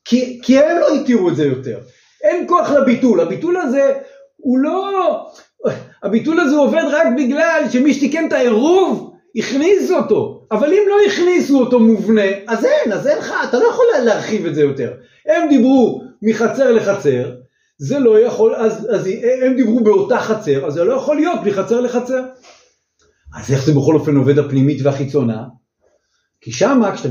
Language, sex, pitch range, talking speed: Hebrew, male, 170-285 Hz, 170 wpm